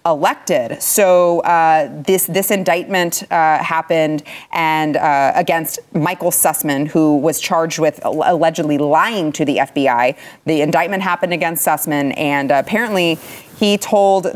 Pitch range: 150-180 Hz